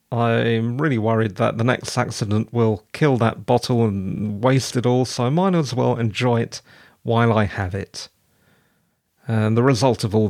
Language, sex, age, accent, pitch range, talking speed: English, male, 40-59, British, 115-160 Hz, 180 wpm